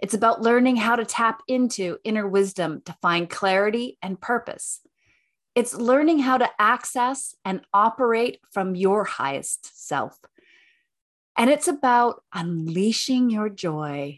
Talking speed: 130 wpm